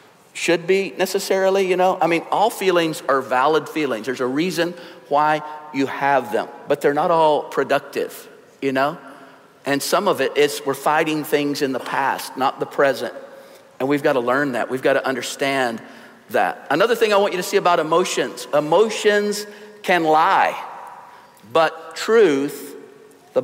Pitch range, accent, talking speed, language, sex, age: 150-205 Hz, American, 170 wpm, English, male, 50-69